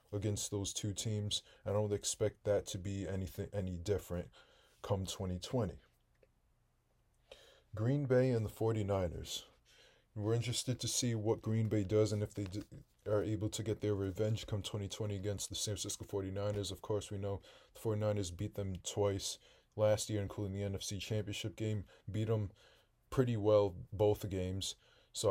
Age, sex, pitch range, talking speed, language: 20-39, male, 100-110 Hz, 160 wpm, English